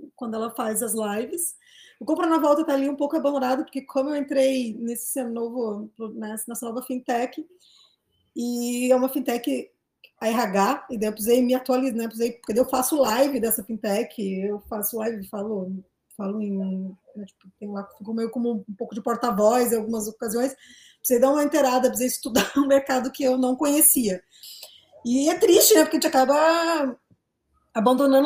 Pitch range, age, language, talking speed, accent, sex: 220-270 Hz, 20-39, Portuguese, 180 wpm, Brazilian, female